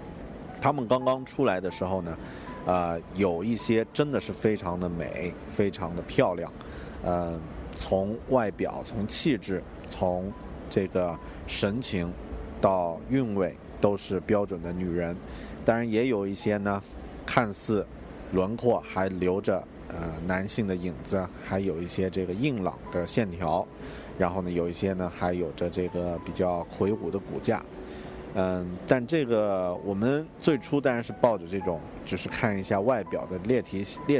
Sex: male